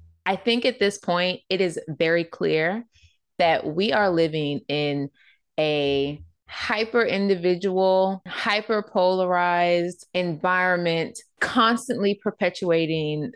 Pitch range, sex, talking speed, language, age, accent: 150-180 Hz, female, 90 wpm, English, 20-39, American